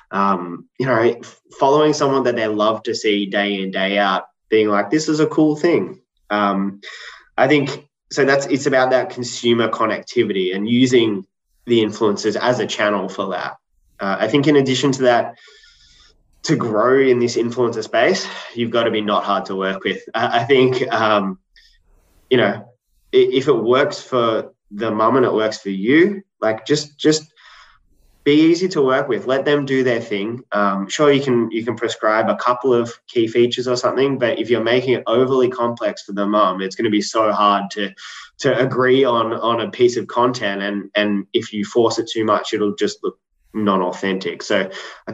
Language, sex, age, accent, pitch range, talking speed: English, male, 20-39, Australian, 105-135 Hz, 190 wpm